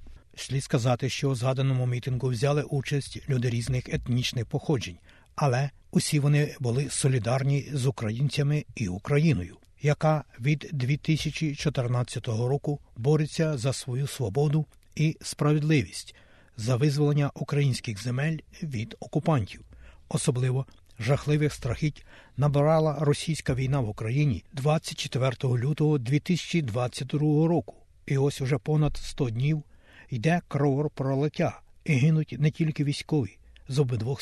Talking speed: 110 wpm